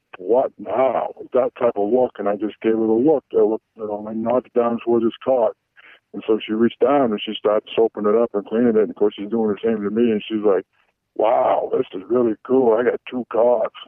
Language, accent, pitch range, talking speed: English, American, 110-130 Hz, 255 wpm